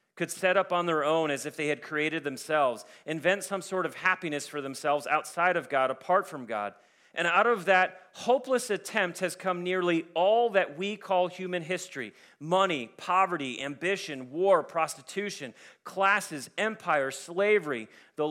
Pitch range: 160-210 Hz